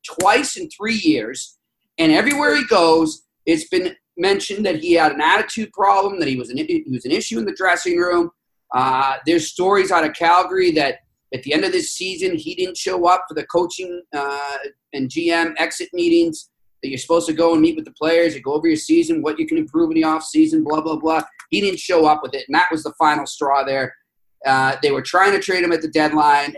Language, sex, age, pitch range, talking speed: English, male, 40-59, 135-195 Hz, 230 wpm